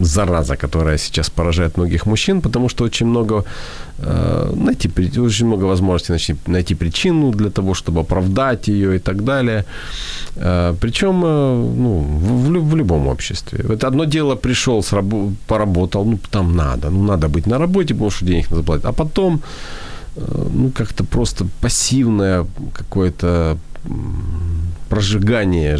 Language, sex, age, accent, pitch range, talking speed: Ukrainian, male, 40-59, native, 85-120 Hz, 130 wpm